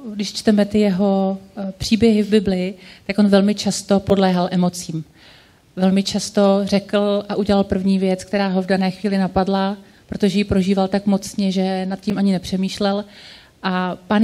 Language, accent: Czech, native